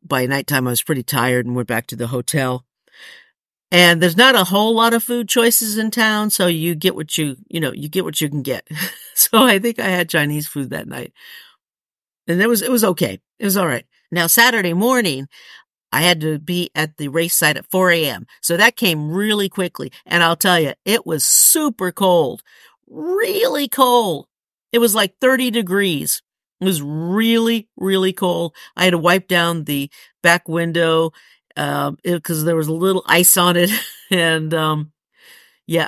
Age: 50-69